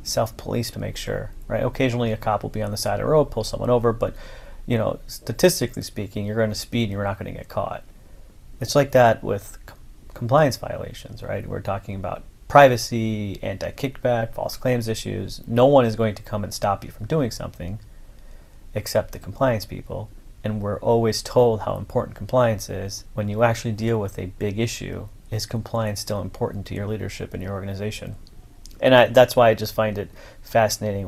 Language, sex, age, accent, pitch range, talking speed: English, male, 30-49, American, 100-115 Hz, 195 wpm